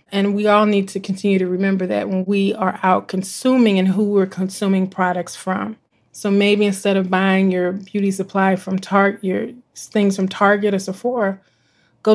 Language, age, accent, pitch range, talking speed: English, 30-49, American, 185-220 Hz, 185 wpm